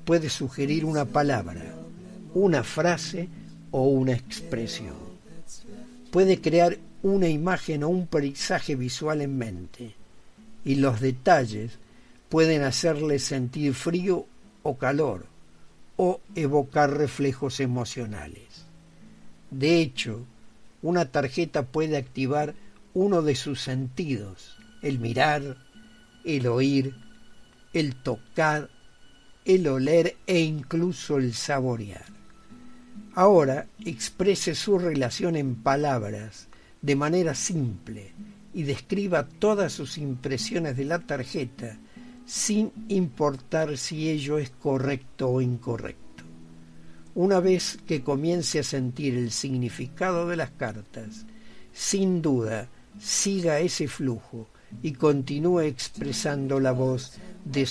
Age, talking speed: 50-69, 105 wpm